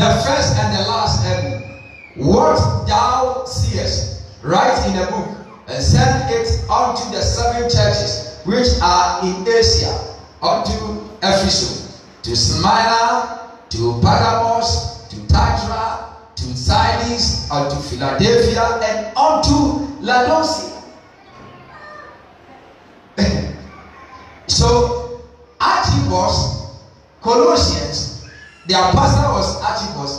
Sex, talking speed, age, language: male, 90 wpm, 40-59, English